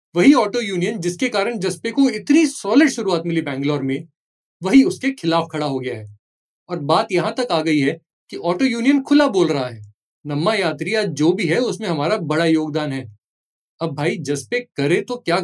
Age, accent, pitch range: 30-49, native, 150-225 Hz